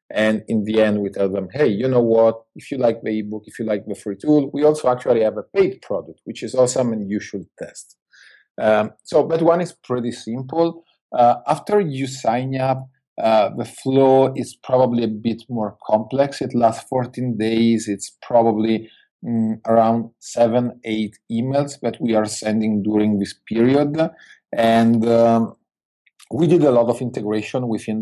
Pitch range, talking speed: 105-125 Hz, 180 wpm